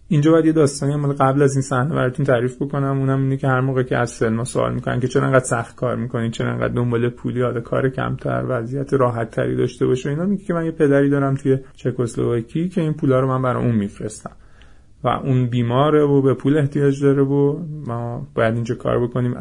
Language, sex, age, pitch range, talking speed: Persian, male, 30-49, 115-140 Hz, 210 wpm